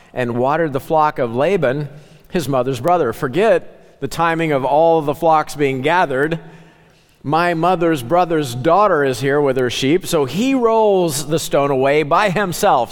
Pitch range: 135-165 Hz